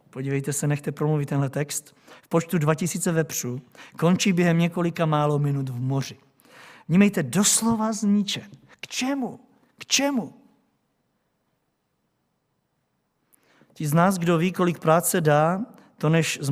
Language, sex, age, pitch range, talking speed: Czech, male, 50-69, 150-210 Hz, 125 wpm